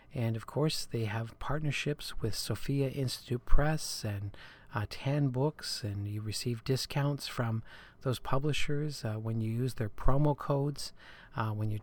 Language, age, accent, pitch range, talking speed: English, 40-59, American, 110-135 Hz, 155 wpm